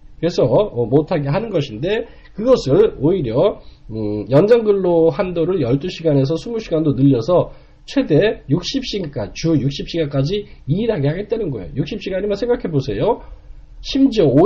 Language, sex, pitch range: Korean, male, 140-200 Hz